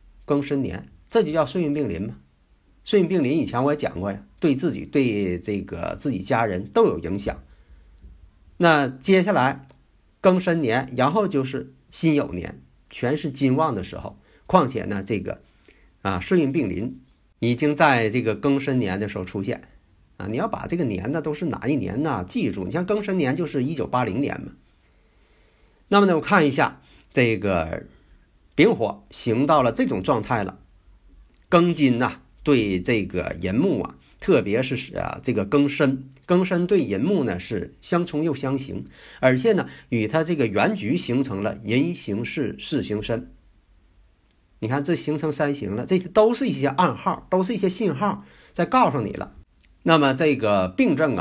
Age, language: 50-69, Chinese